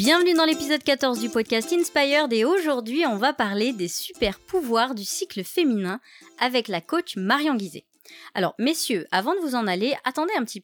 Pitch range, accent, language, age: 200-290 Hz, French, French, 30-49